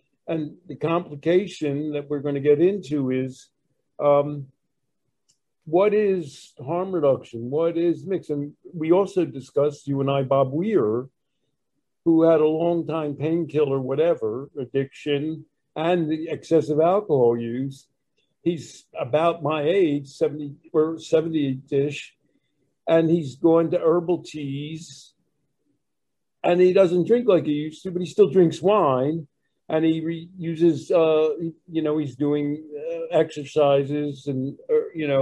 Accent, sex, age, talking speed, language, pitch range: American, male, 60-79, 135 wpm, English, 145-175 Hz